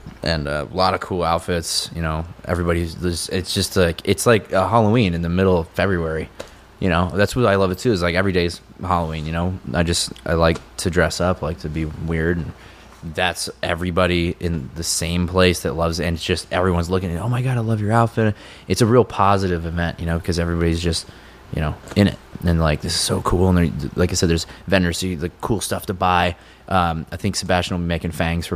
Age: 20-39